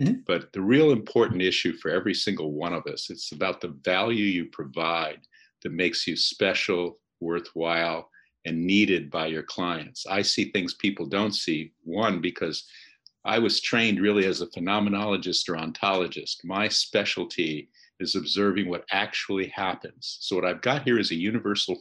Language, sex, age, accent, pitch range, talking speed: English, male, 50-69, American, 90-105 Hz, 160 wpm